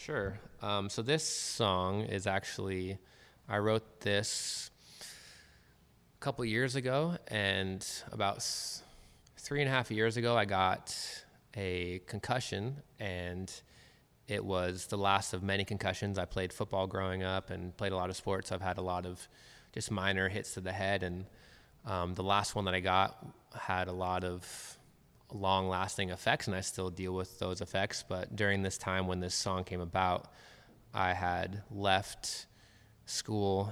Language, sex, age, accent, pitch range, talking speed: English, male, 20-39, American, 95-105 Hz, 160 wpm